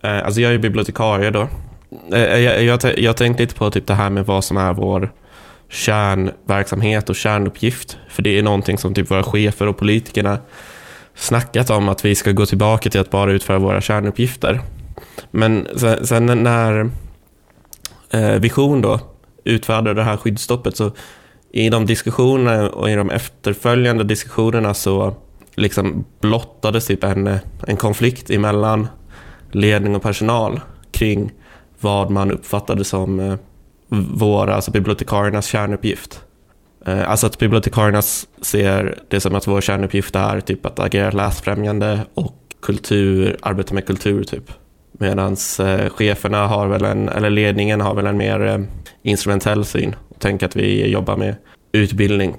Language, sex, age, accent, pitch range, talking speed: Swedish, male, 20-39, native, 100-110 Hz, 135 wpm